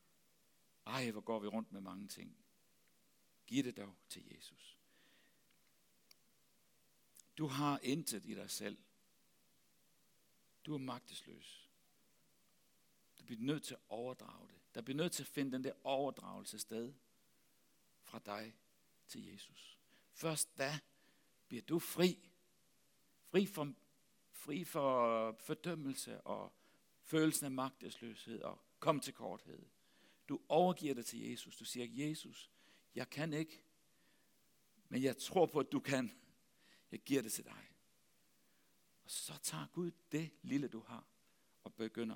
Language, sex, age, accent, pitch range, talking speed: Danish, male, 60-79, native, 115-155 Hz, 135 wpm